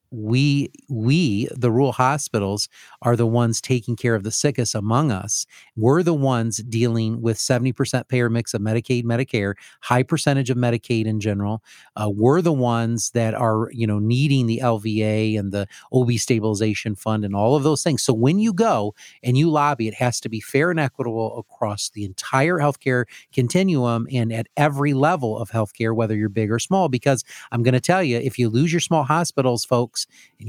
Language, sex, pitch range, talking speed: English, male, 115-140 Hz, 190 wpm